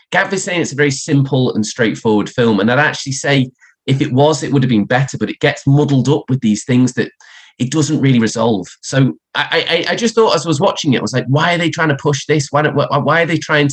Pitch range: 110-145 Hz